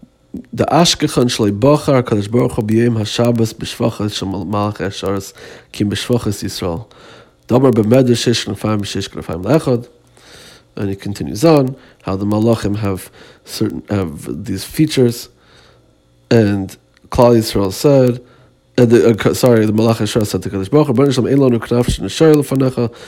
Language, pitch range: Hebrew, 100-130 Hz